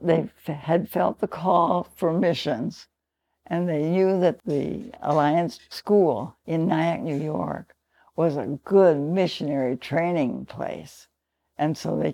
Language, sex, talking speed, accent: English, female, 135 wpm, American